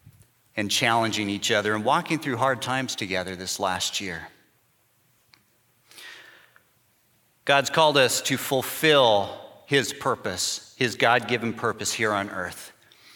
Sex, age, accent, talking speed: male, 40-59, American, 120 wpm